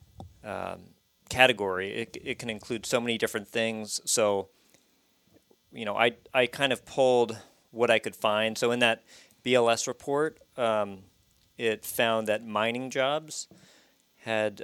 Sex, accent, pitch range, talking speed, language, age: male, American, 105-125 Hz, 140 wpm, English, 40-59